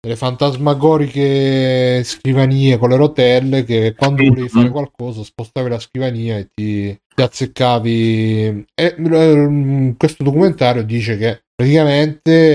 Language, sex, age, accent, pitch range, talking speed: Italian, male, 30-49, native, 120-140 Hz, 120 wpm